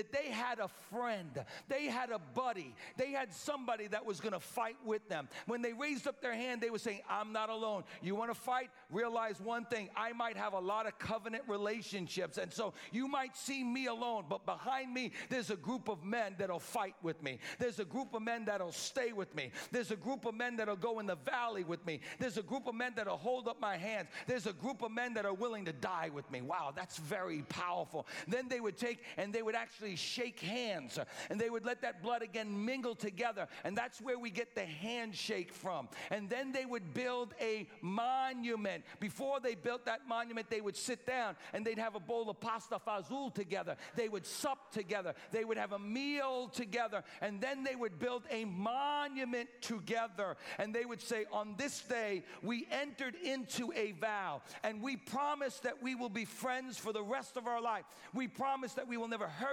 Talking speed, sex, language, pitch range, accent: 220 wpm, male, English, 210-250 Hz, American